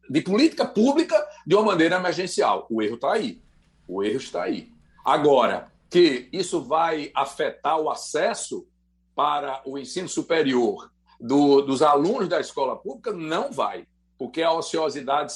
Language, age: Portuguese, 60-79